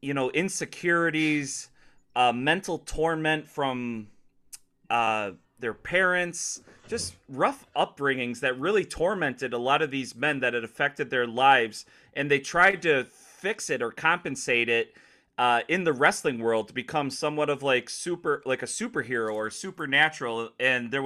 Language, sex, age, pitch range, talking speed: English, male, 30-49, 130-160 Hz, 150 wpm